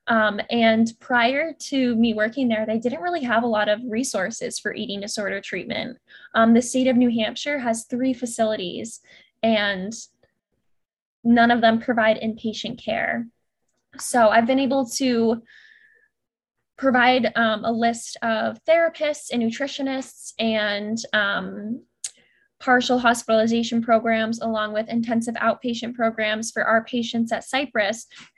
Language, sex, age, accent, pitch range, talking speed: English, female, 10-29, American, 220-250 Hz, 135 wpm